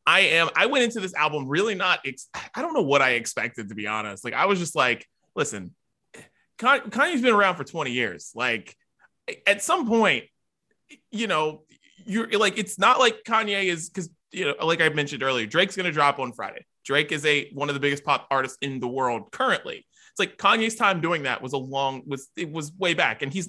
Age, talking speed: 20-39, 220 wpm